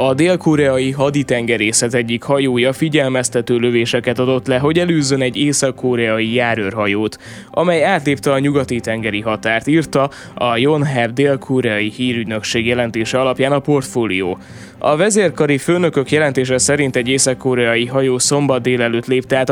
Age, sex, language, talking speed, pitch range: 20-39, male, Hungarian, 130 wpm, 115-145 Hz